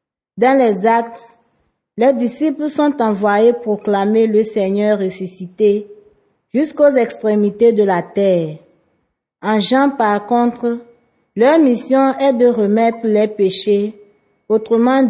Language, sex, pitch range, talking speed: French, female, 205-255 Hz, 110 wpm